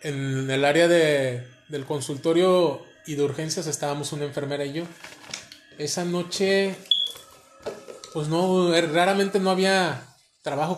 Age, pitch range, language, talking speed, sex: 20-39, 140-170 Hz, Spanish, 120 wpm, male